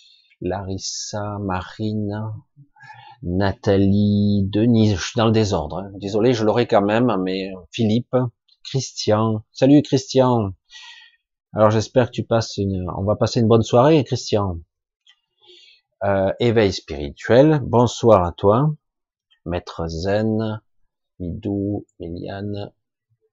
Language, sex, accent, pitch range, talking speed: French, male, French, 100-135 Hz, 110 wpm